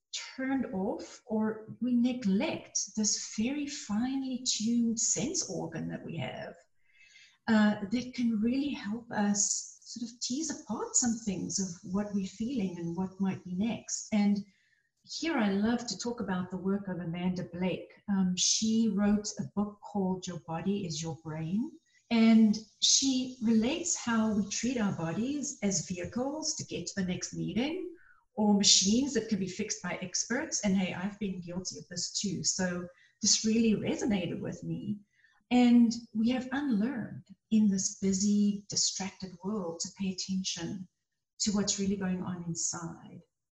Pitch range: 185-235 Hz